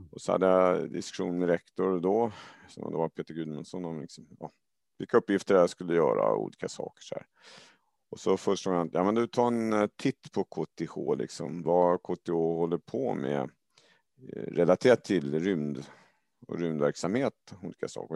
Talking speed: 175 wpm